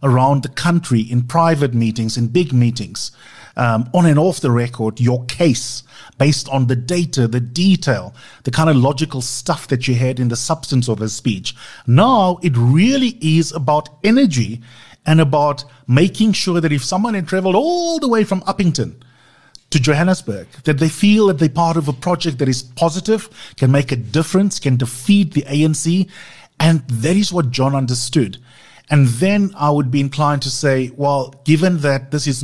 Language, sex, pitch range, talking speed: English, male, 125-165 Hz, 180 wpm